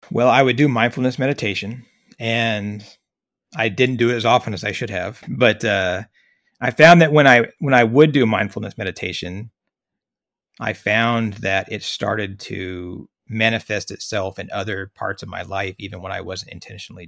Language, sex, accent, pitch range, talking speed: English, male, American, 95-120 Hz, 170 wpm